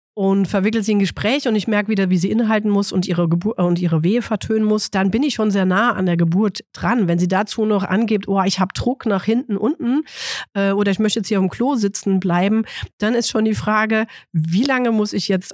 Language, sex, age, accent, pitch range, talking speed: German, female, 40-59, German, 180-215 Hz, 245 wpm